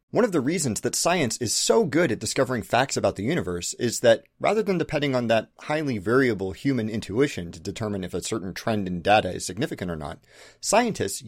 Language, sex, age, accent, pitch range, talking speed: English, male, 30-49, American, 105-160 Hz, 210 wpm